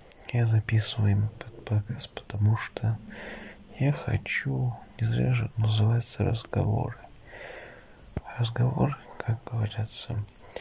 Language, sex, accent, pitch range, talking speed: Russian, male, native, 110-125 Hz, 90 wpm